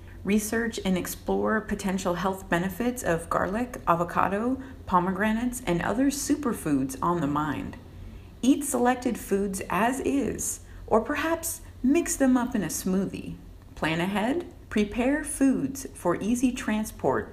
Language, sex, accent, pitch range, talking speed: English, female, American, 165-245 Hz, 125 wpm